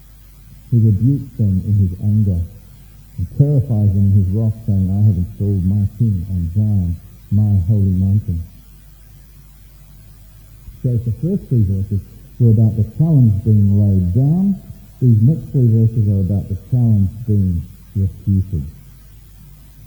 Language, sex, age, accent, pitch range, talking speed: English, male, 60-79, American, 105-135 Hz, 140 wpm